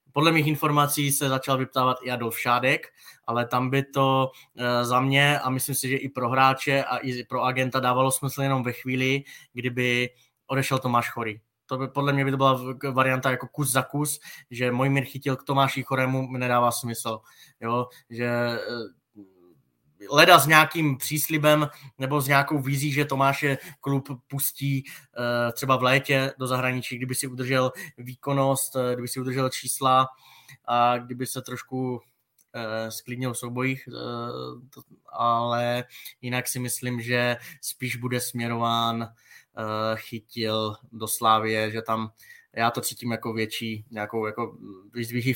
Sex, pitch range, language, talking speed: male, 120-130 Hz, Czech, 145 wpm